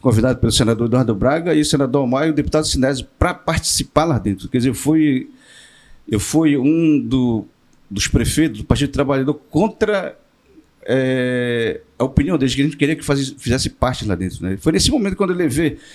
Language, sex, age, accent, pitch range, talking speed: Portuguese, male, 50-69, Brazilian, 120-155 Hz, 190 wpm